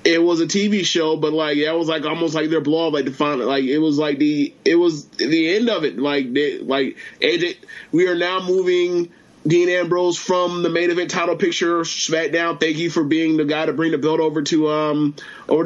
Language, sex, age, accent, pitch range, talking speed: English, male, 20-39, American, 150-175 Hz, 235 wpm